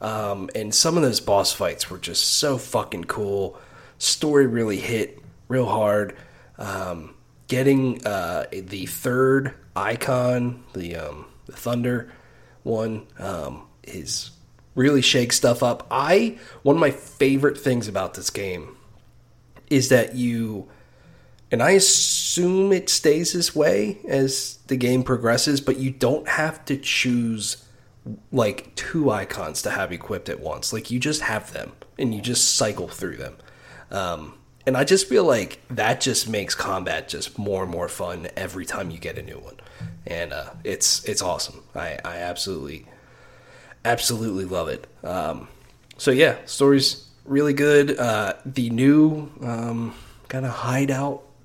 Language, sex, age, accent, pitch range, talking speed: English, male, 30-49, American, 115-140 Hz, 150 wpm